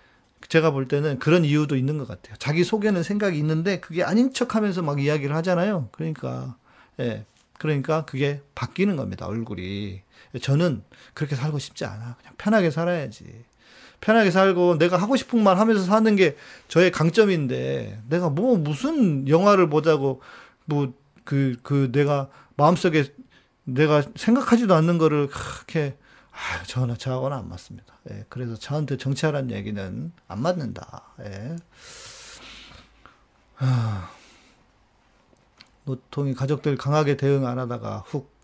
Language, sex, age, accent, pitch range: Korean, male, 40-59, native, 120-170 Hz